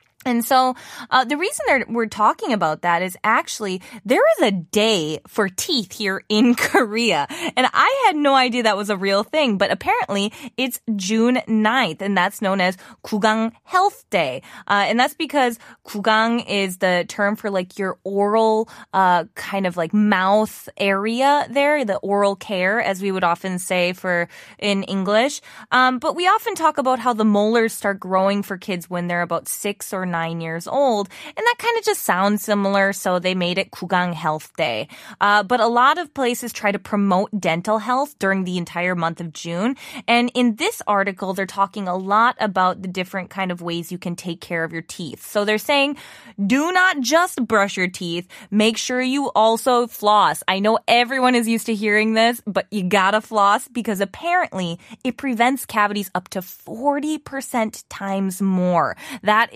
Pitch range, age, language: 190-250 Hz, 20-39, Korean